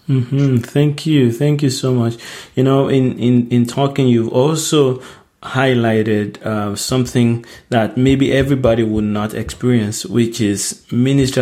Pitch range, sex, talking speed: 110-130 Hz, male, 140 wpm